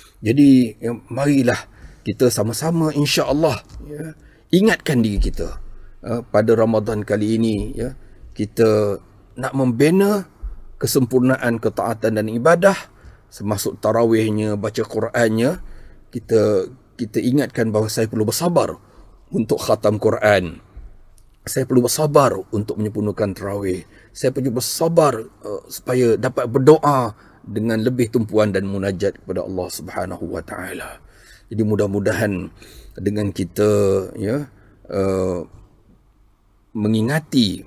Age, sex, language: 30-49, male, Malay